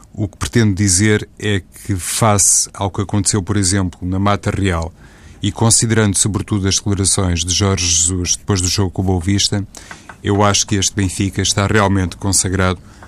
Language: Portuguese